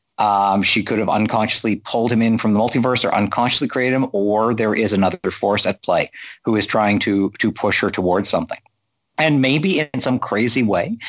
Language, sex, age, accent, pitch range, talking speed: English, male, 50-69, American, 95-115 Hz, 200 wpm